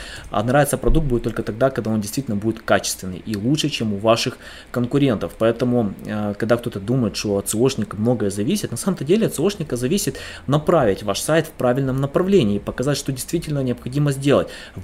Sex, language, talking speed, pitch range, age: male, Russian, 180 wpm, 110-150 Hz, 20-39